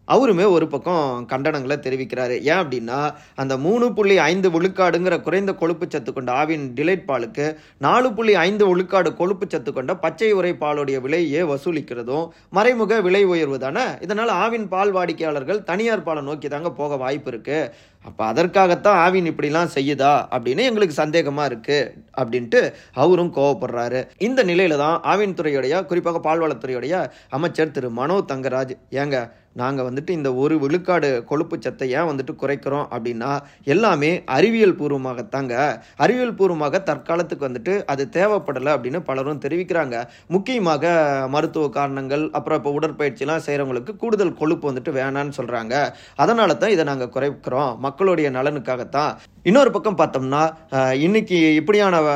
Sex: male